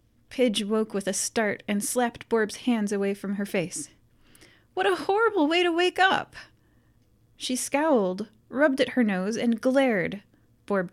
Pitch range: 185-275 Hz